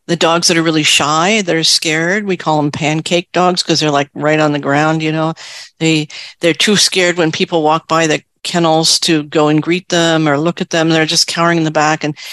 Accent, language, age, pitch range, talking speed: American, English, 50-69, 155-180 Hz, 235 wpm